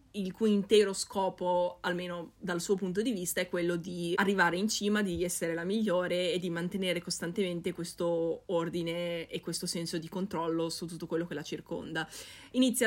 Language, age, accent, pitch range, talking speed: Italian, 20-39, native, 165-190 Hz, 175 wpm